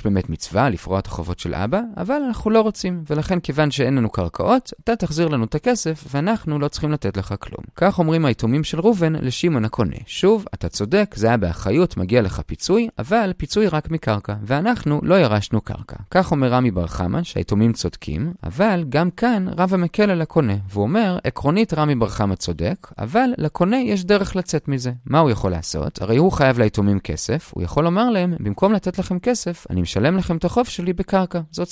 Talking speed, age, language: 180 wpm, 30-49, Hebrew